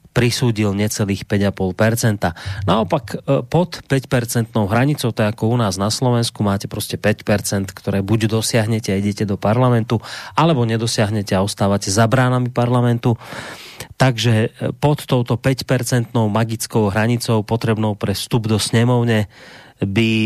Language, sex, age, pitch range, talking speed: Slovak, male, 30-49, 105-125 Hz, 125 wpm